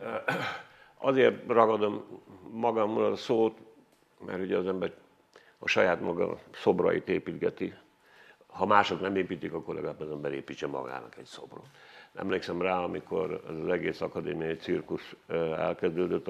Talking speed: 125 wpm